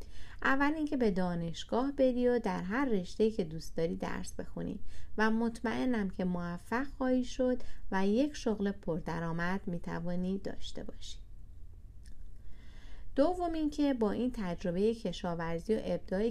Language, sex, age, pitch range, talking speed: Persian, female, 30-49, 170-220 Hz, 130 wpm